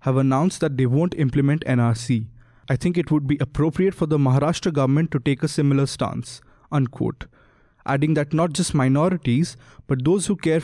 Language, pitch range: English, 135-165 Hz